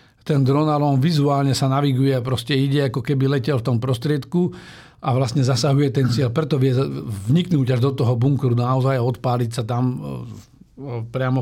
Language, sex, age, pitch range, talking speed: Slovak, male, 50-69, 125-145 Hz, 170 wpm